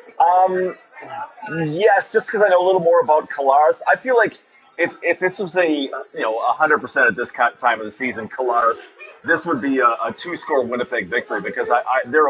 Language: English